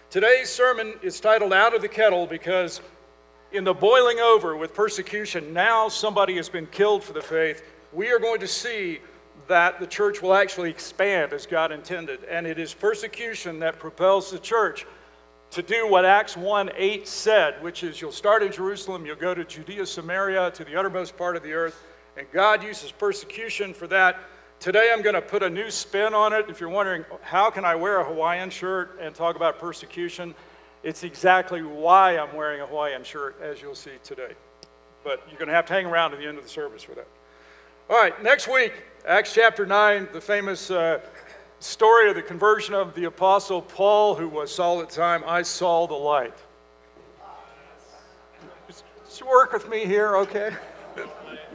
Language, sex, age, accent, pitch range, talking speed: English, male, 50-69, American, 165-210 Hz, 185 wpm